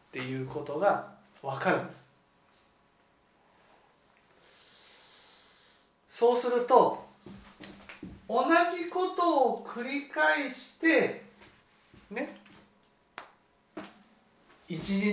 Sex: male